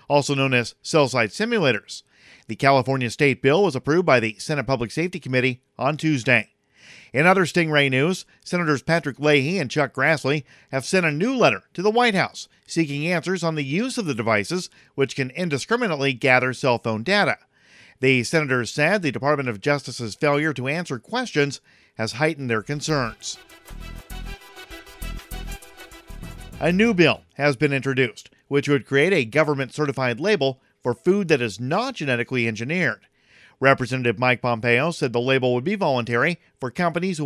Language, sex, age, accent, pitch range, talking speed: English, male, 50-69, American, 125-160 Hz, 160 wpm